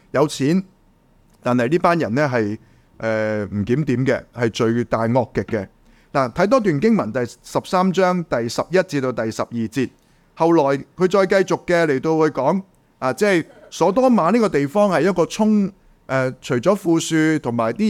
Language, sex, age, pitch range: Chinese, male, 30-49, 125-175 Hz